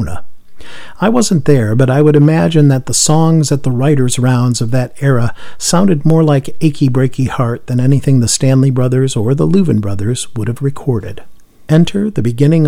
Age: 50-69